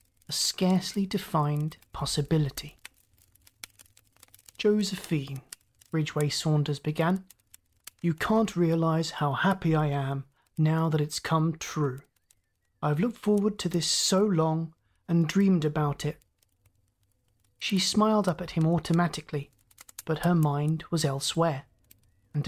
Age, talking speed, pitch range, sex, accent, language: 30-49, 115 wpm, 140-180 Hz, male, British, English